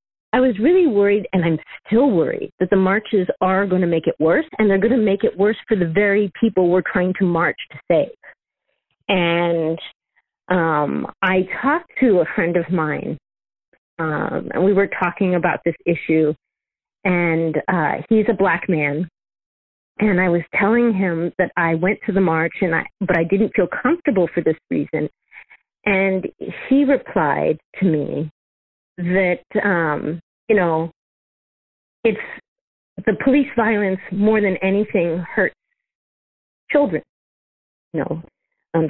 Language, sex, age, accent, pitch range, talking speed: English, female, 40-59, American, 170-210 Hz, 155 wpm